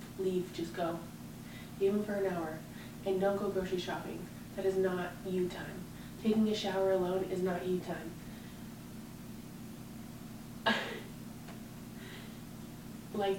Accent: American